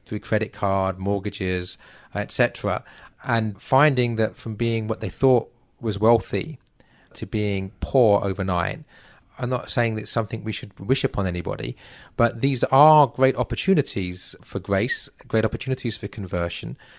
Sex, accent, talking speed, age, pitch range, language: male, British, 140 wpm, 30-49, 95-115 Hz, English